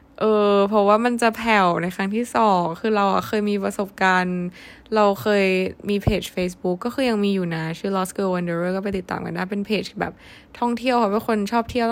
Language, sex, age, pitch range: Thai, female, 20-39, 185-230 Hz